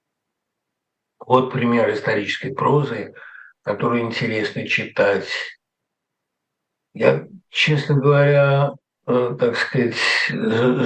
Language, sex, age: Russian, male, 60-79